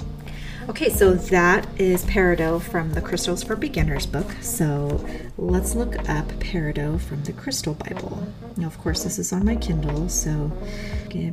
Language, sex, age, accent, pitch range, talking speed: English, female, 30-49, American, 165-200 Hz, 160 wpm